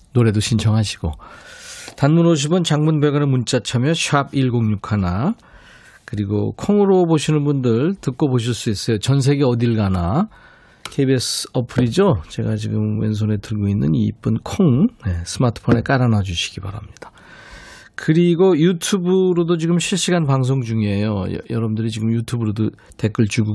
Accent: native